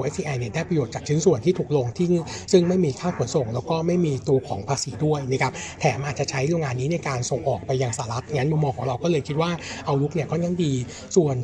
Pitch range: 130-165 Hz